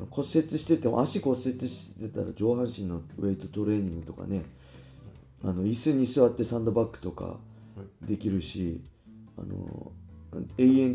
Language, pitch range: Japanese, 90-120 Hz